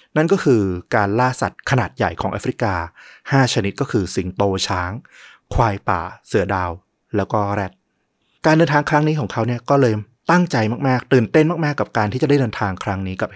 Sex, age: male, 20-39